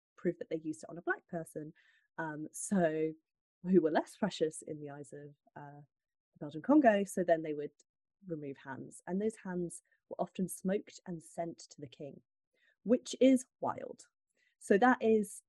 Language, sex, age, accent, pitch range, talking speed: English, female, 30-49, British, 155-210 Hz, 180 wpm